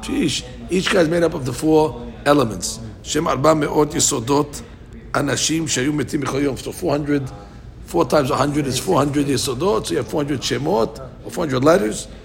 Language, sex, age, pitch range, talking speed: English, male, 60-79, 125-160 Hz, 65 wpm